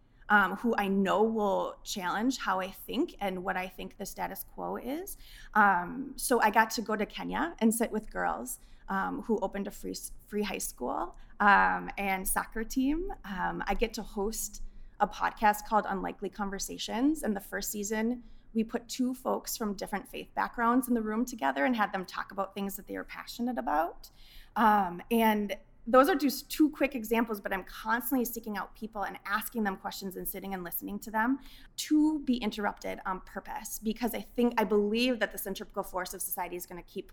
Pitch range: 195-235 Hz